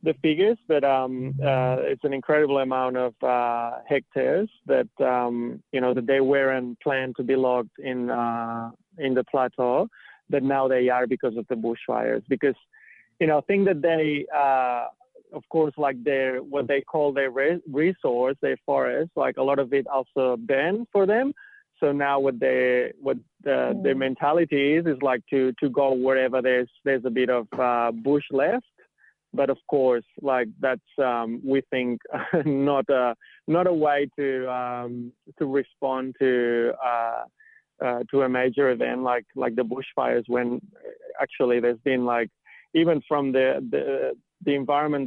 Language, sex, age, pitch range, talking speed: English, male, 30-49, 125-140 Hz, 170 wpm